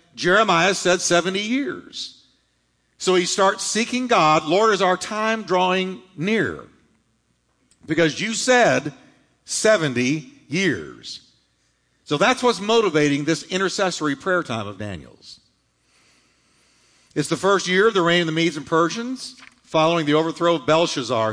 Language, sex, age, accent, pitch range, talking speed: English, male, 50-69, American, 125-185 Hz, 130 wpm